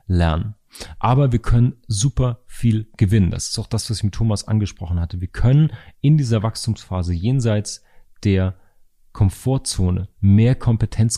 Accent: German